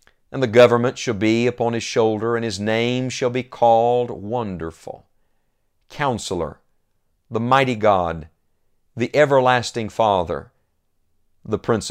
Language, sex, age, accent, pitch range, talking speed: English, male, 50-69, American, 100-125 Hz, 120 wpm